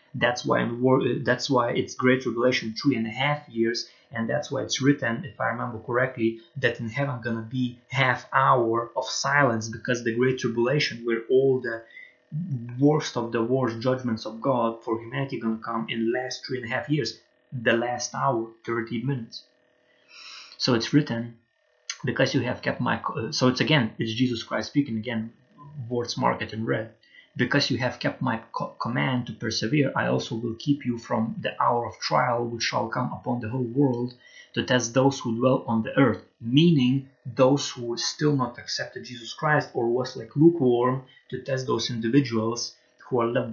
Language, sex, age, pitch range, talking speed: English, male, 20-39, 115-135 Hz, 190 wpm